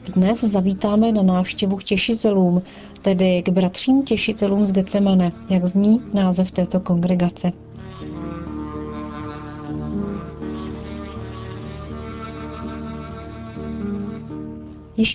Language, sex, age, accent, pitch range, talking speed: Czech, female, 40-59, native, 180-215 Hz, 70 wpm